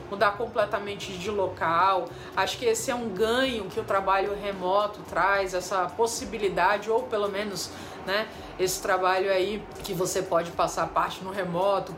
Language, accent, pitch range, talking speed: Portuguese, Brazilian, 185-235 Hz, 155 wpm